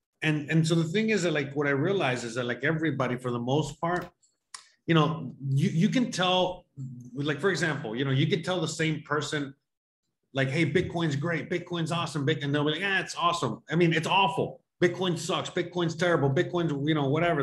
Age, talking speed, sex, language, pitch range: 30-49, 210 wpm, male, English, 130-170 Hz